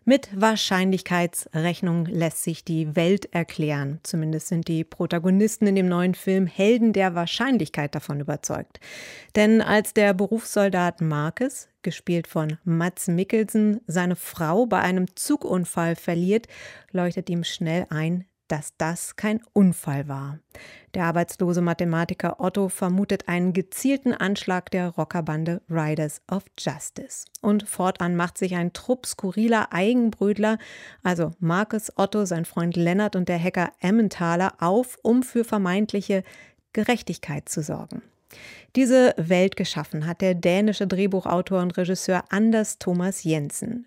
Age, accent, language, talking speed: 30-49, German, German, 130 wpm